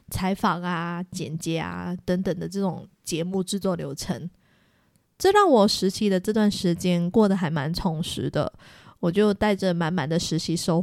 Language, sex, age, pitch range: Chinese, female, 20-39, 180-215 Hz